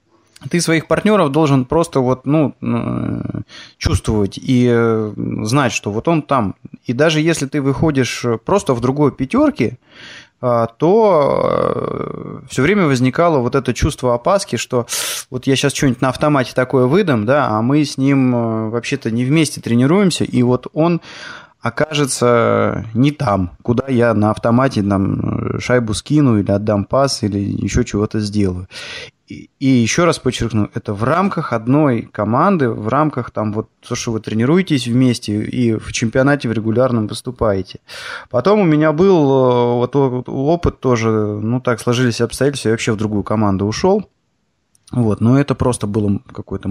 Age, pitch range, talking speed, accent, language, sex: 20-39, 110-145 Hz, 150 wpm, native, Russian, male